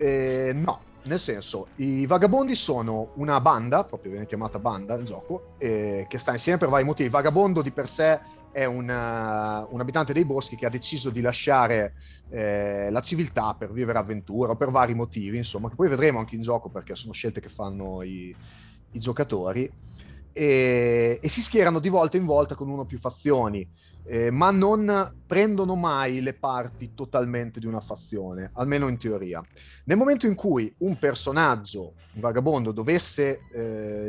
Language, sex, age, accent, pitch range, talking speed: Italian, male, 30-49, native, 105-145 Hz, 175 wpm